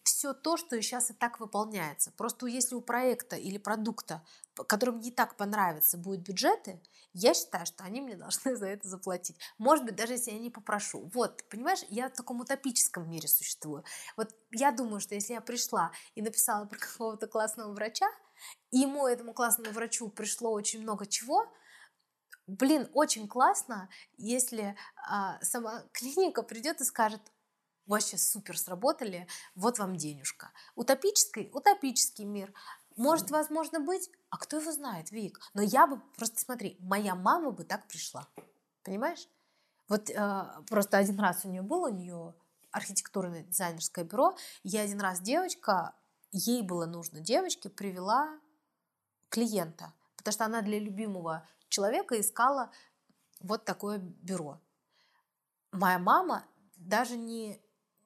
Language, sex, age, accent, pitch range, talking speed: Russian, female, 20-39, native, 195-255 Hz, 145 wpm